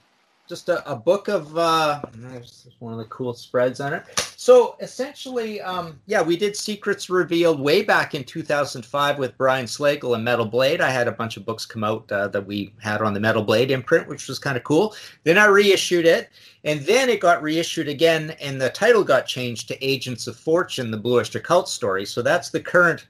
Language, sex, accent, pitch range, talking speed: English, male, American, 120-155 Hz, 210 wpm